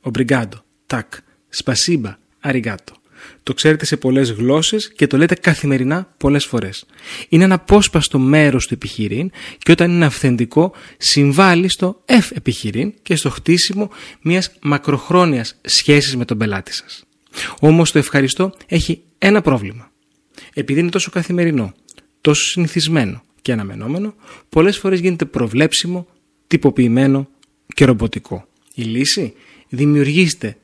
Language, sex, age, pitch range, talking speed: Greek, male, 30-49, 130-180 Hz, 125 wpm